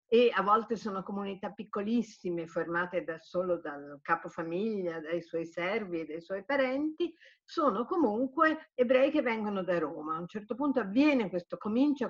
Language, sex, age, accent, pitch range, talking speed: Italian, female, 50-69, native, 170-260 Hz, 160 wpm